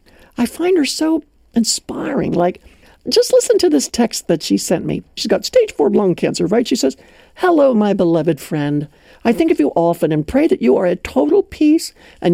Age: 60-79